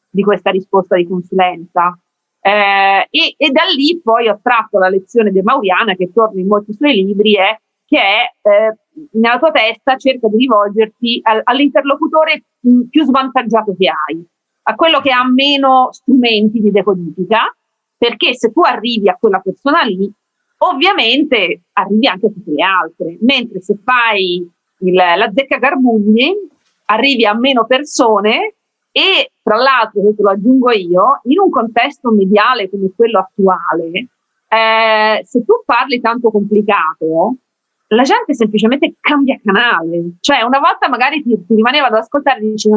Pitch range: 200-265 Hz